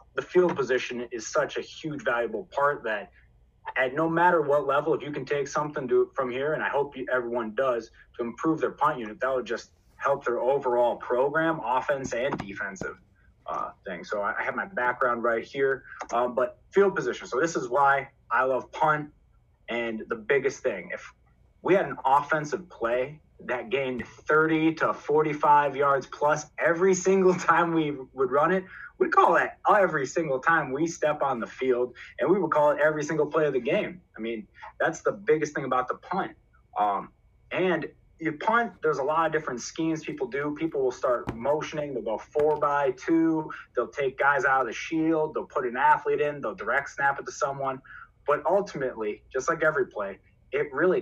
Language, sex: English, male